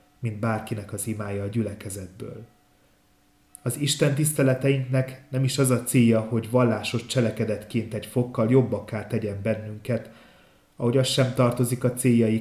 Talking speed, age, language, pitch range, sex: 135 wpm, 30-49, Hungarian, 105-125 Hz, male